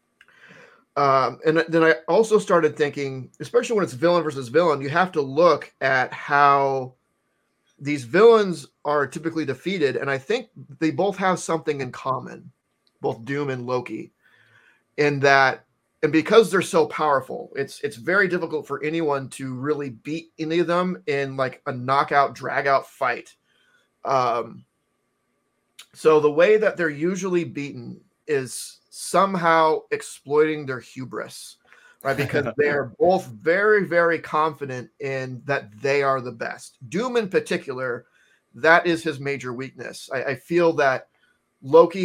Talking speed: 145 wpm